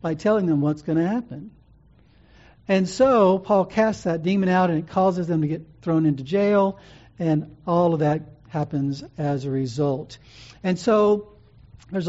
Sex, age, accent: male, 60-79, American